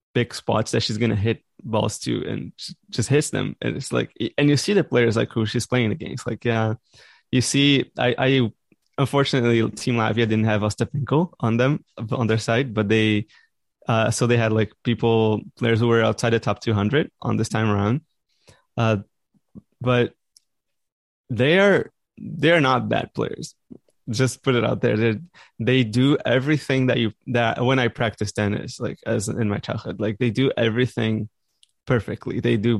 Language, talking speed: English, 185 wpm